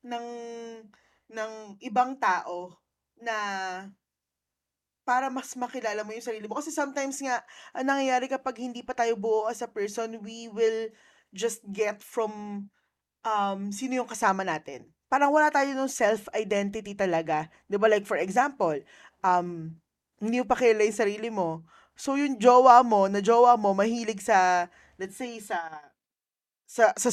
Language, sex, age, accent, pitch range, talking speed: Filipino, female, 20-39, native, 200-265 Hz, 150 wpm